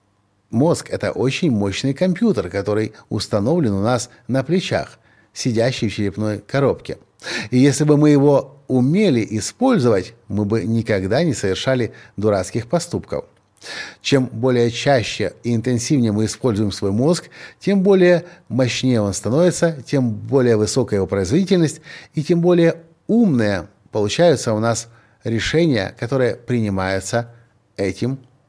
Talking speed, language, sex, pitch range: 125 wpm, Russian, male, 110-165 Hz